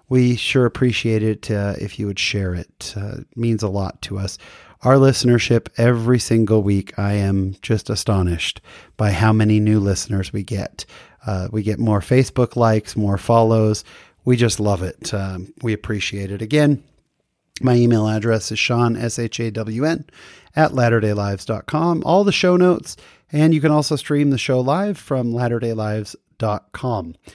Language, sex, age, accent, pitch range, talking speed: English, male, 30-49, American, 100-130 Hz, 160 wpm